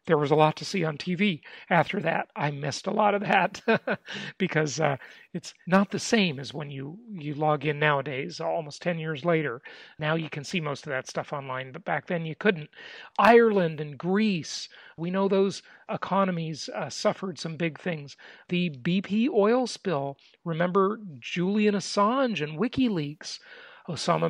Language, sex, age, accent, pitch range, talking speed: English, male, 40-59, American, 150-205 Hz, 170 wpm